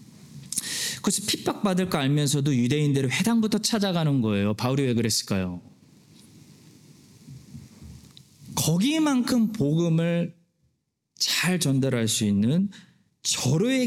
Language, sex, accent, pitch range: Korean, male, native, 125-200 Hz